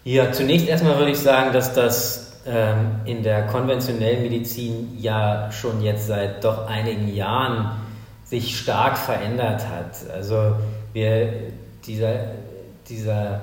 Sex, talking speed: male, 125 wpm